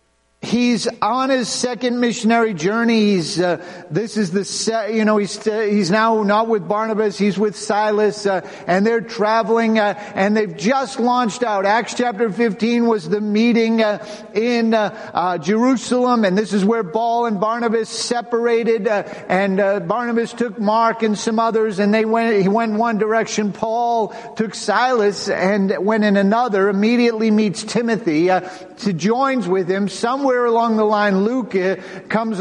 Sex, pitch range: male, 165-225 Hz